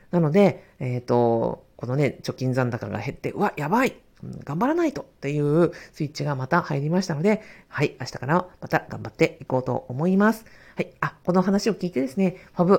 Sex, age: female, 50-69